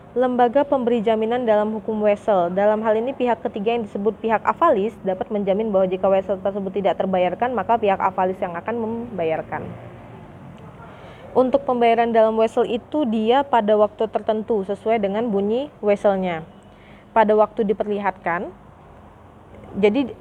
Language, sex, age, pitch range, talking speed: Indonesian, female, 20-39, 195-230 Hz, 135 wpm